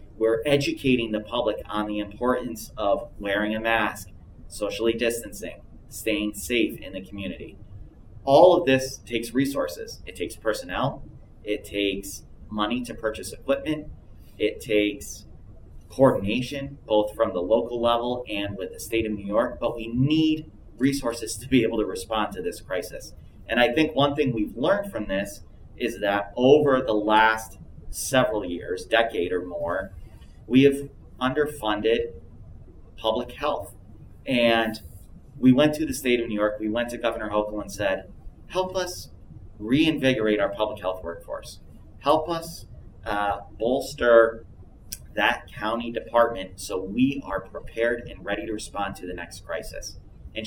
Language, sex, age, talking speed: English, male, 30-49, 150 wpm